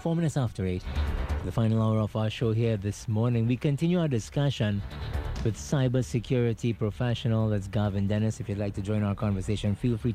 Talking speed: 190 wpm